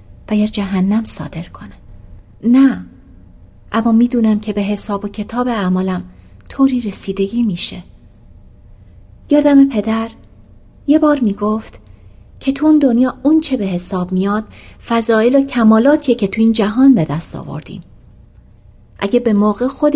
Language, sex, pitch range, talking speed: Persian, female, 185-255 Hz, 130 wpm